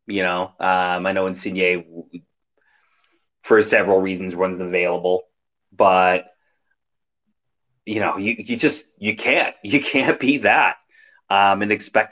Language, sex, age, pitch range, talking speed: English, male, 30-49, 100-155 Hz, 130 wpm